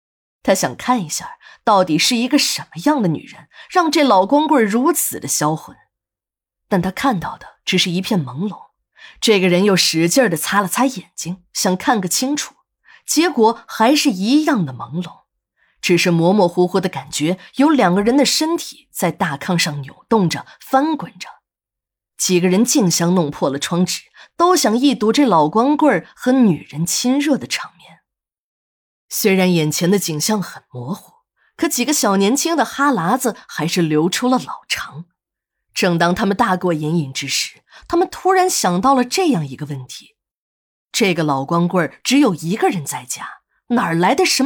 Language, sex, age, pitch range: Chinese, female, 20-39, 165-255 Hz